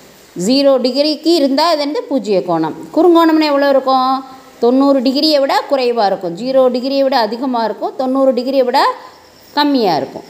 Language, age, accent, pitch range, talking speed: Tamil, 20-39, native, 240-290 Hz, 145 wpm